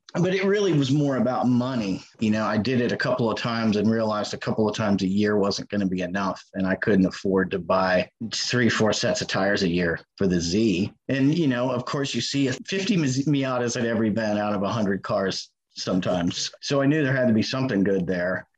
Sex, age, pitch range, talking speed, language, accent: male, 30-49, 100-125 Hz, 235 wpm, English, American